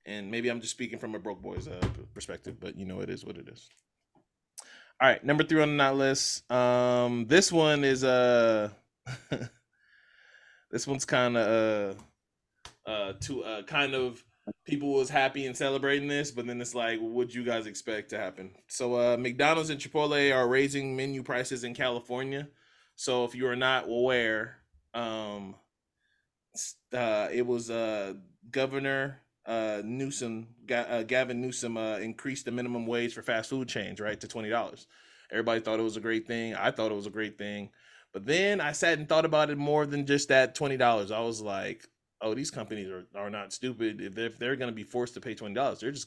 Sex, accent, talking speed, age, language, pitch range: male, American, 200 wpm, 20-39, English, 110-135 Hz